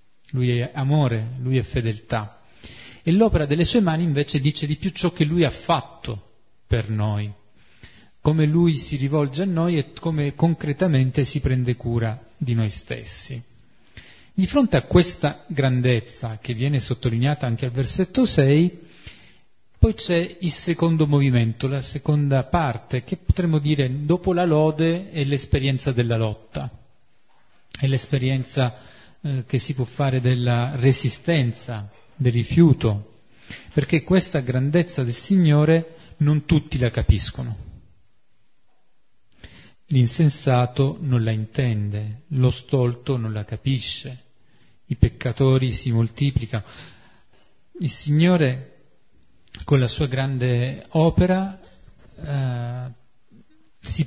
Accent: native